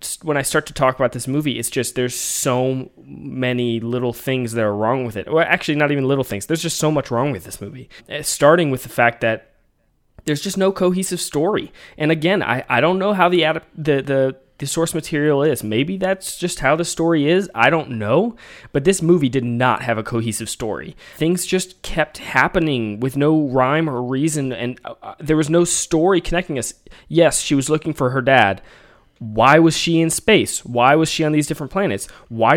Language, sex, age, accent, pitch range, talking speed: English, male, 20-39, American, 125-170 Hz, 210 wpm